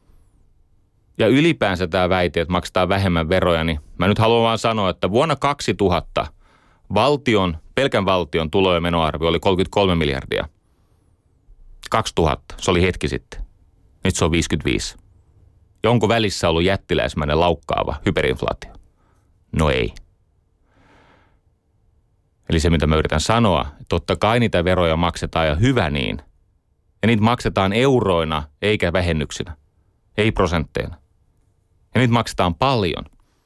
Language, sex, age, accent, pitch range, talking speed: Finnish, male, 30-49, native, 85-105 Hz, 125 wpm